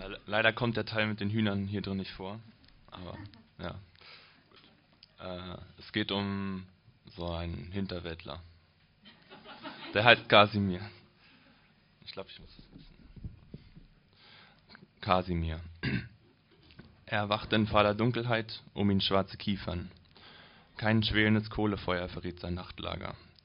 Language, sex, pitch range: German, male, 90-105 Hz